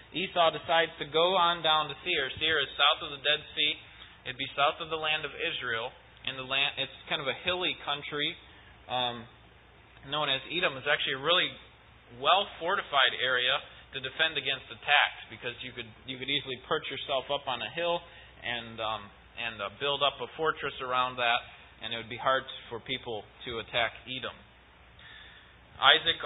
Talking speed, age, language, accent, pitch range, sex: 185 wpm, 20-39, English, American, 125-155 Hz, male